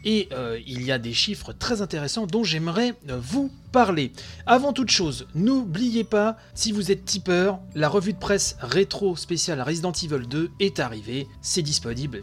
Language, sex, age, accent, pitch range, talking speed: French, male, 30-49, French, 130-205 Hz, 170 wpm